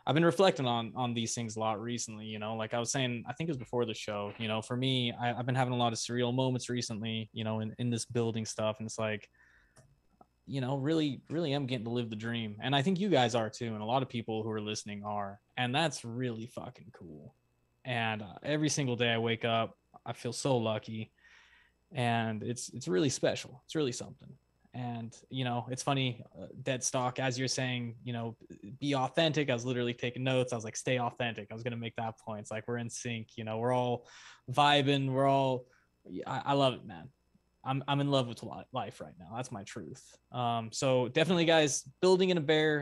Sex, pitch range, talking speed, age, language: male, 115-140 Hz, 230 wpm, 20-39, English